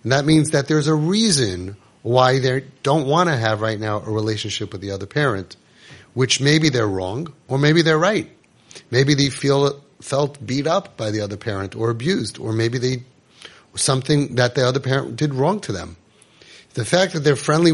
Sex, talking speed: male, 195 wpm